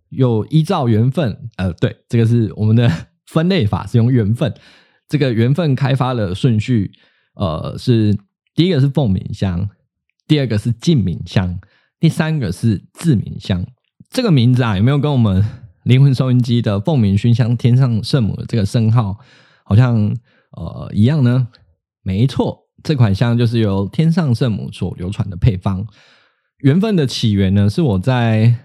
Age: 20-39